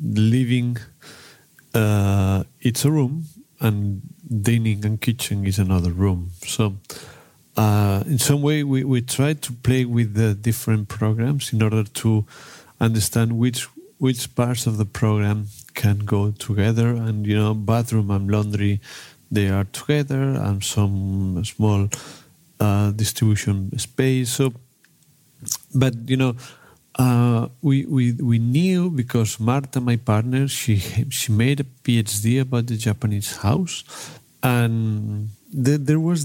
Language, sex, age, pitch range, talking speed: Slovak, male, 40-59, 105-130 Hz, 130 wpm